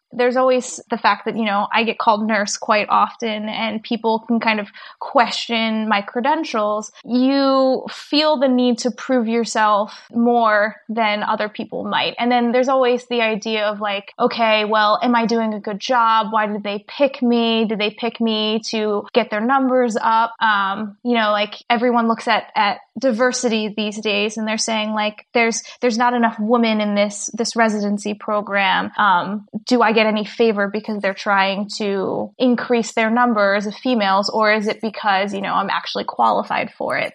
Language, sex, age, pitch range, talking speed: English, female, 20-39, 215-245 Hz, 185 wpm